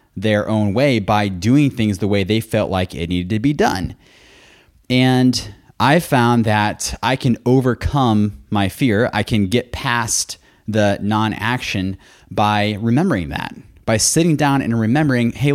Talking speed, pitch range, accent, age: 155 wpm, 105-135 Hz, American, 20-39